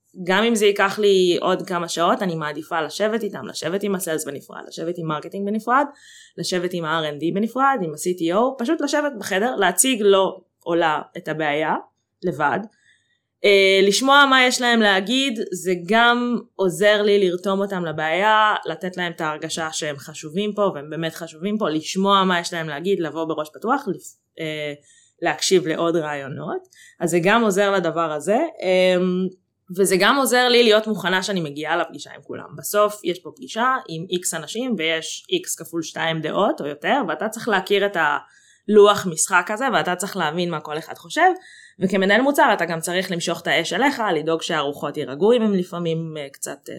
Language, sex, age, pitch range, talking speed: English, female, 20-39, 160-210 Hz, 145 wpm